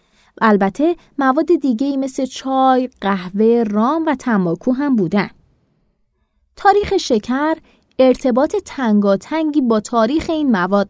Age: 20-39